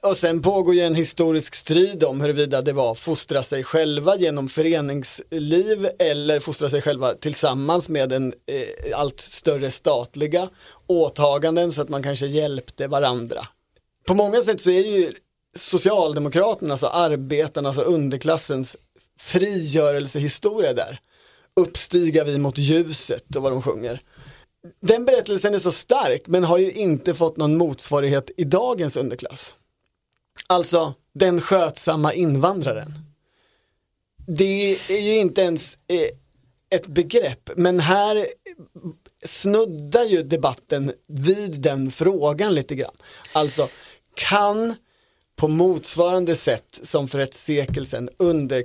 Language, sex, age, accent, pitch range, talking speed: Swedish, male, 30-49, native, 145-185 Hz, 125 wpm